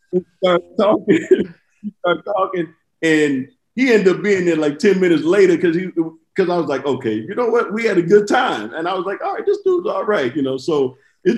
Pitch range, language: 110-150 Hz, English